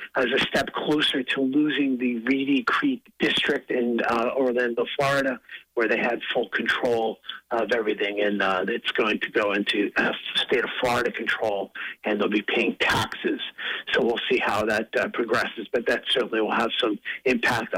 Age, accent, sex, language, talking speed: 50-69, American, male, English, 175 wpm